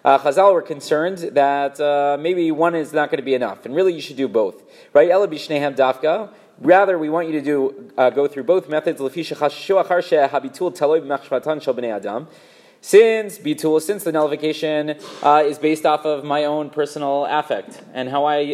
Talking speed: 155 wpm